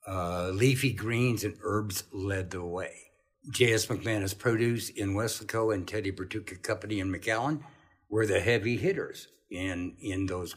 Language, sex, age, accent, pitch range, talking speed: English, male, 60-79, American, 100-125 Hz, 150 wpm